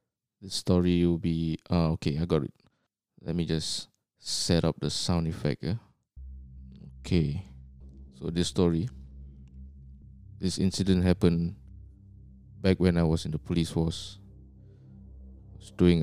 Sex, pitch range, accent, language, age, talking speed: male, 70-95 Hz, Malaysian, English, 20-39, 135 wpm